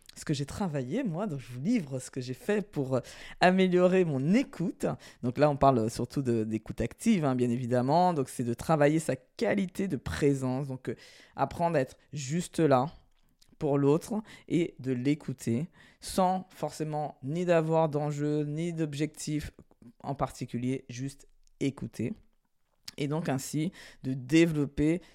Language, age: French, 20-39